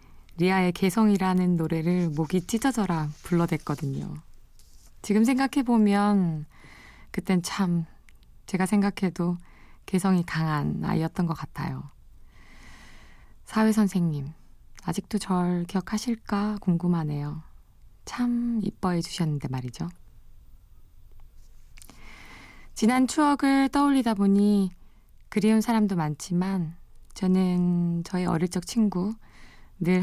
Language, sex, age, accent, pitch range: Korean, female, 20-39, native, 170-210 Hz